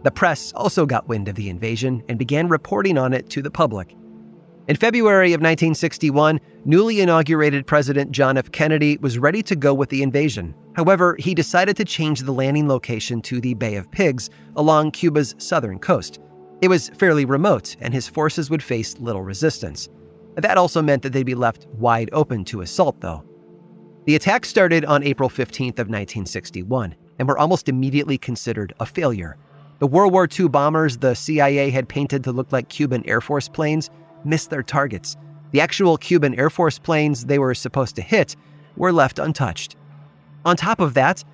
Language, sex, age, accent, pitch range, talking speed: English, male, 30-49, American, 125-160 Hz, 180 wpm